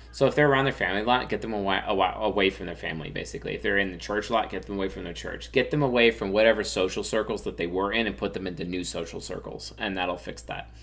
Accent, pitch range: American, 85-110 Hz